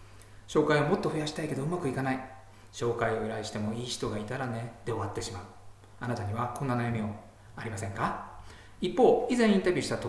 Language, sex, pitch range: Japanese, male, 105-150 Hz